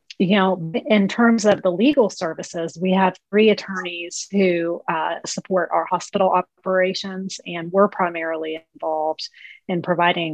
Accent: American